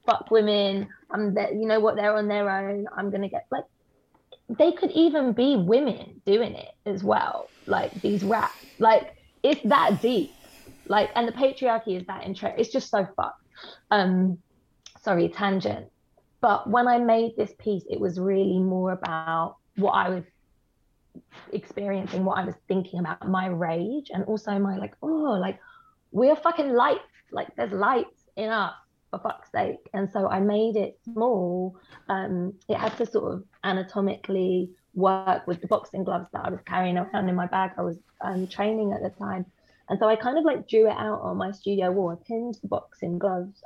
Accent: British